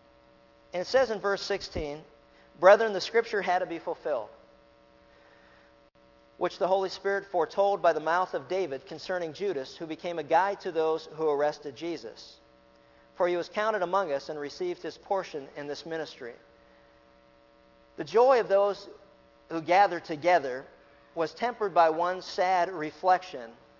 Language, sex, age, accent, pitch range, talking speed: English, male, 50-69, American, 145-200 Hz, 150 wpm